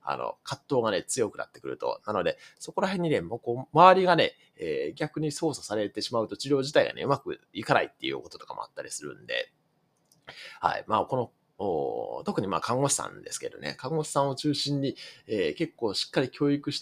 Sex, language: male, Japanese